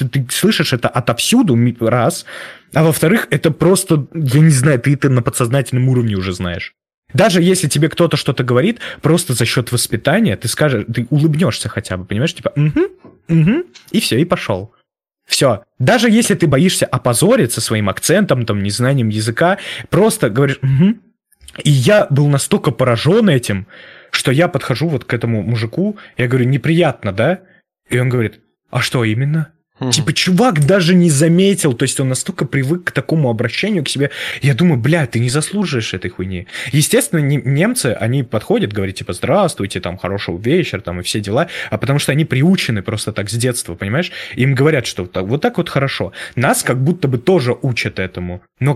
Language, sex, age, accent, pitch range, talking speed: Russian, male, 20-39, native, 115-165 Hz, 175 wpm